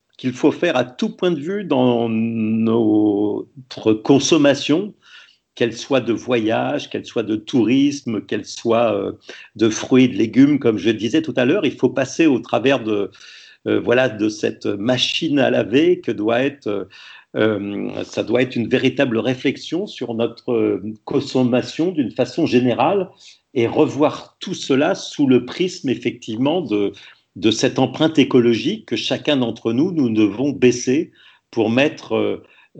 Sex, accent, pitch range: male, French, 115-140 Hz